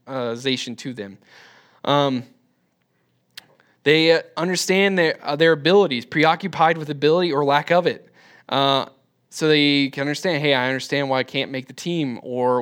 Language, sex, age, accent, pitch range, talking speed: English, male, 10-29, American, 140-195 Hz, 155 wpm